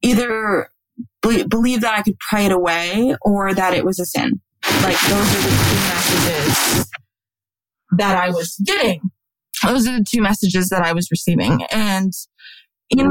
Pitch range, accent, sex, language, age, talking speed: 175-210 Hz, American, female, English, 20-39, 165 wpm